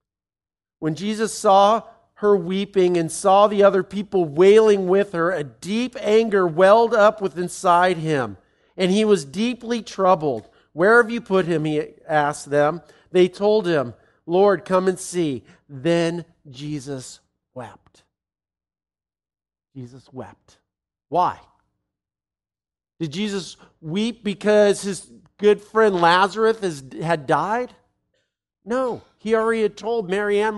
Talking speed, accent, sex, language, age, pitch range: 125 wpm, American, male, English, 50-69, 150-205 Hz